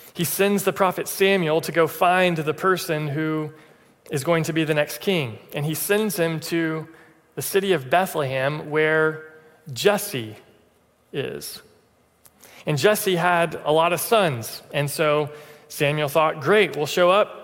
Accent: American